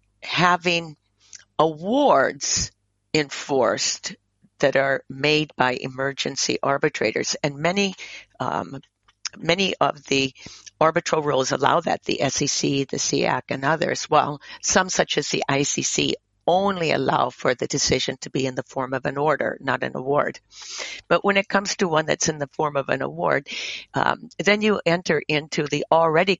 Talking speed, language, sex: 150 wpm, English, female